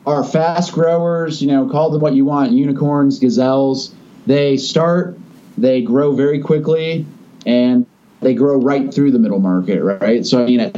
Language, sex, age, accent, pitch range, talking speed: English, male, 30-49, American, 125-200 Hz, 175 wpm